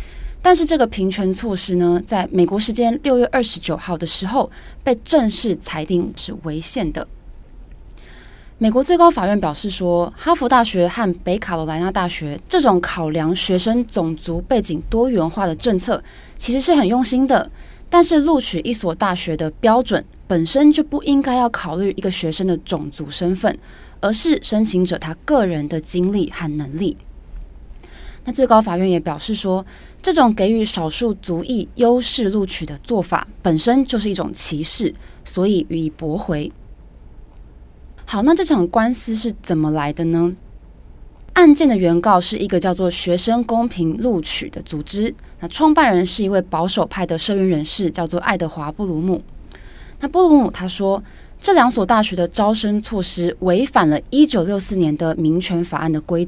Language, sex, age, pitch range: Chinese, female, 20-39, 170-230 Hz